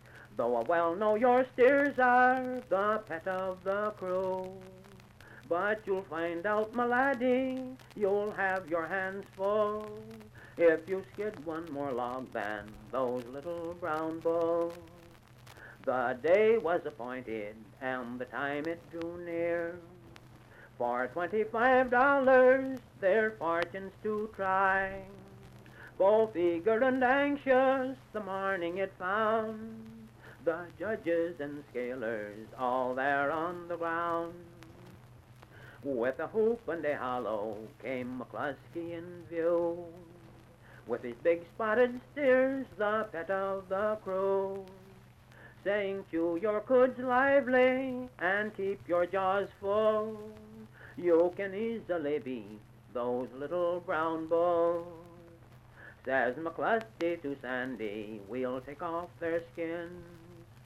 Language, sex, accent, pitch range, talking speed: English, male, American, 130-210 Hz, 115 wpm